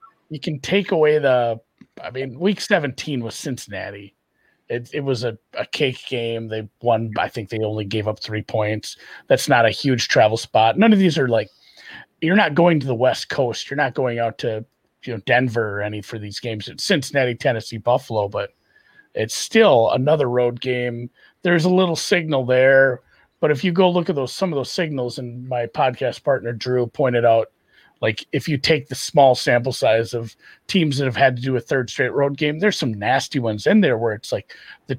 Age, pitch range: 40-59, 115-150 Hz